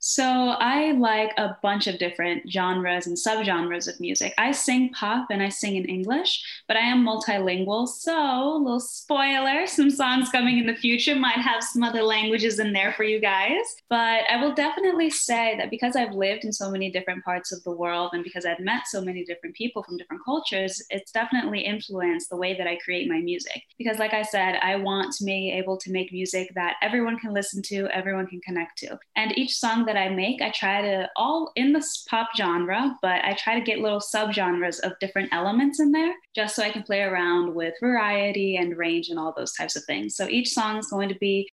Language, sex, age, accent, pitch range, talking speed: English, female, 10-29, American, 180-240 Hz, 220 wpm